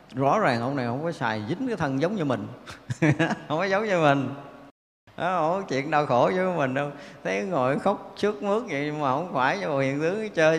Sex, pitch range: male, 120-170 Hz